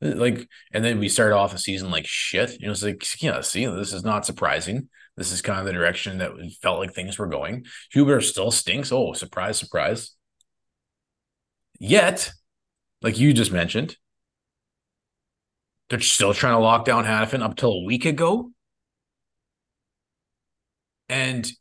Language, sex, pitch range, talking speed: English, male, 100-130 Hz, 160 wpm